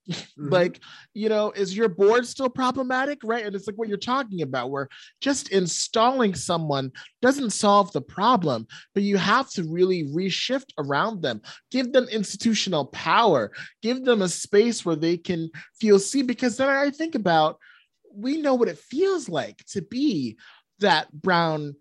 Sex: male